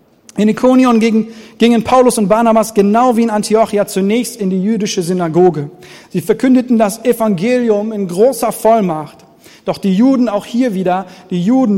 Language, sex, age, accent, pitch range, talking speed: German, male, 40-59, German, 185-225 Hz, 160 wpm